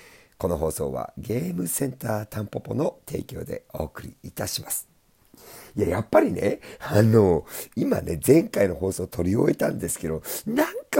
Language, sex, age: Japanese, male, 50-69